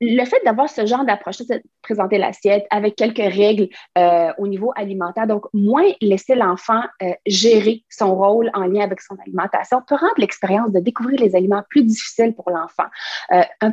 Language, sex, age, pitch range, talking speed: French, female, 30-49, 190-240 Hz, 175 wpm